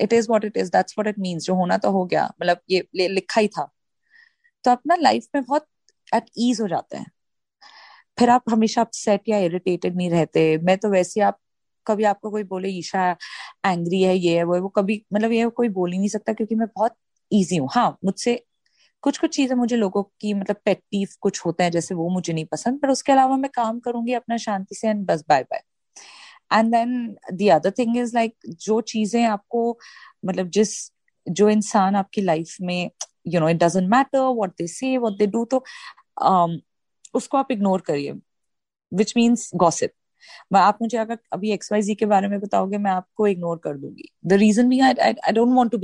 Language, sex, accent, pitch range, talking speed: Hindi, female, native, 190-235 Hz, 170 wpm